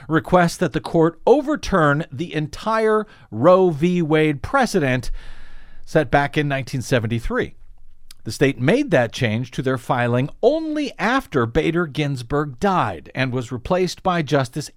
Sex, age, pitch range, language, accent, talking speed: male, 50-69, 120-175 Hz, English, American, 135 wpm